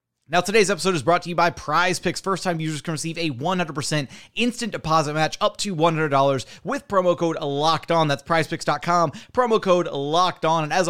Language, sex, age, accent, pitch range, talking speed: English, male, 30-49, American, 160-195 Hz, 200 wpm